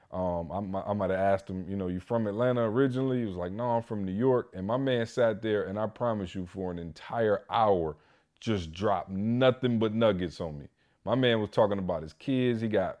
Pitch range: 105-150 Hz